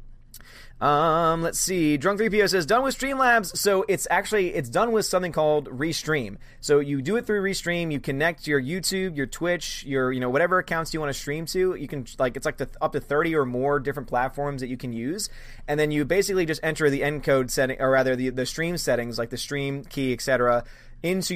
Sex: male